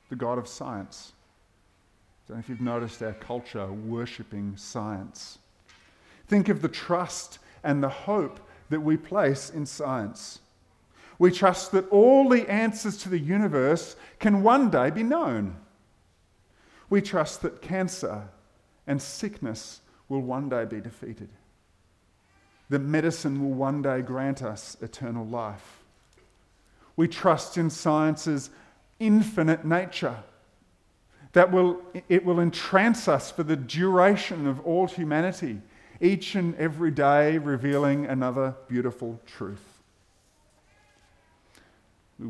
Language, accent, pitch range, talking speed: English, Australian, 105-160 Hz, 125 wpm